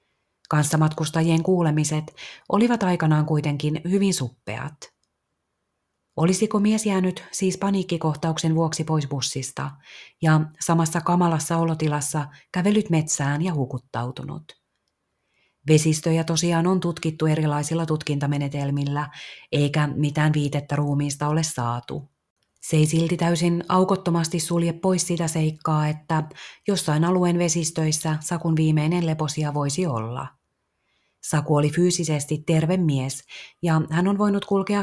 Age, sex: 30-49, female